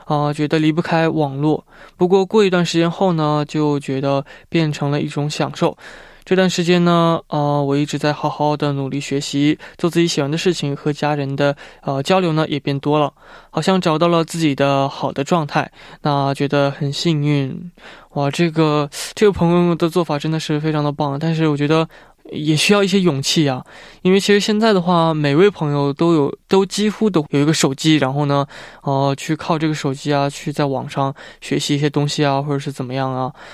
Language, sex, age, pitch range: Korean, male, 20-39, 145-170 Hz